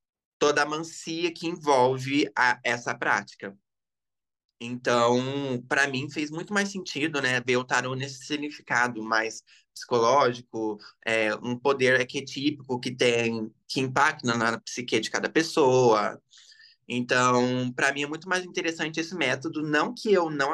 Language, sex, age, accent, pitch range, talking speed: Portuguese, male, 20-39, Brazilian, 120-155 Hz, 135 wpm